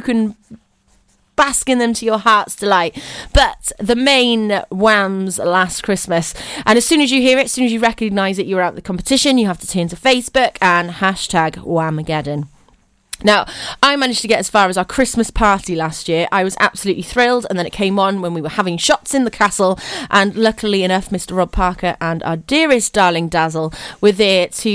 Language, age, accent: English, 30-49, British